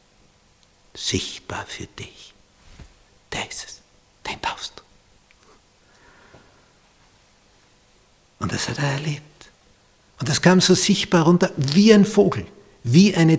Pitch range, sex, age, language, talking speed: 100-130 Hz, male, 60-79, German, 110 wpm